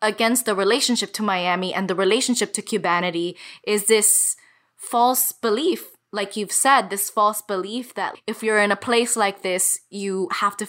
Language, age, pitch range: English, 20-39, 195-240 Hz